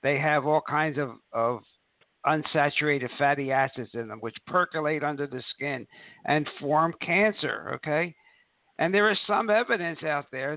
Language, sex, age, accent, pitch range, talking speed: English, male, 60-79, American, 130-160 Hz, 155 wpm